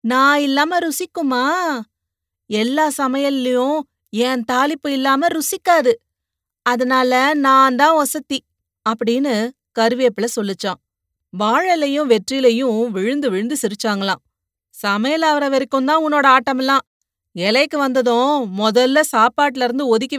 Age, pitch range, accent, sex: 30-49, 195-270 Hz, native, female